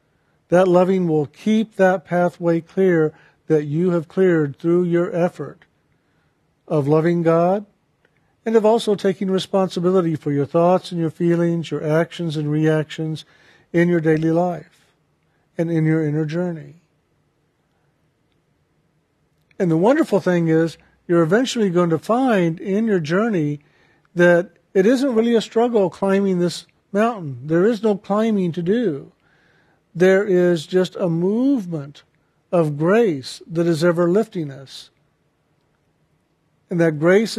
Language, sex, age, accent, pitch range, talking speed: English, male, 50-69, American, 155-190 Hz, 135 wpm